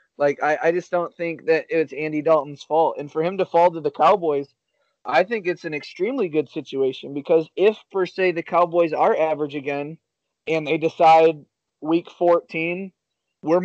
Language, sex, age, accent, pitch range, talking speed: English, male, 20-39, American, 150-175 Hz, 180 wpm